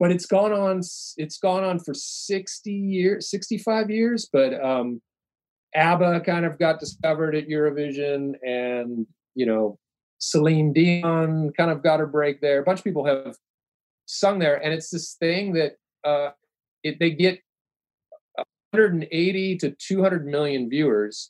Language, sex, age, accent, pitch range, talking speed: English, male, 40-59, American, 130-190 Hz, 160 wpm